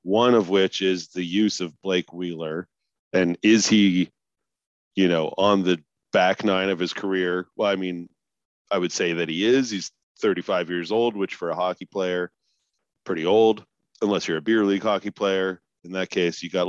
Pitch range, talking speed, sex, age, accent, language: 85-100 Hz, 190 wpm, male, 40-59, American, English